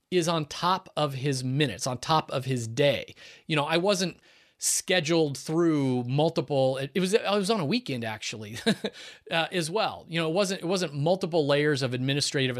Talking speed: 190 wpm